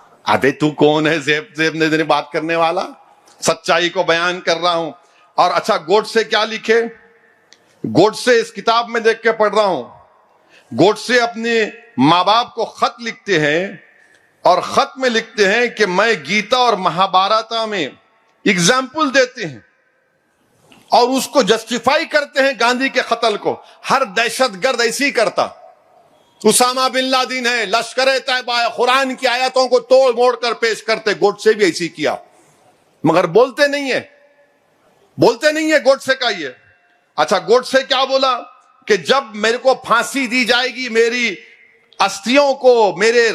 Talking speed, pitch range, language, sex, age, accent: 160 wpm, 210-260 Hz, Hindi, male, 50-69, native